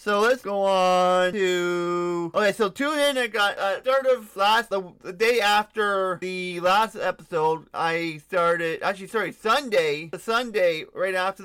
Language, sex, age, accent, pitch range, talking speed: English, male, 30-49, American, 170-205 Hz, 160 wpm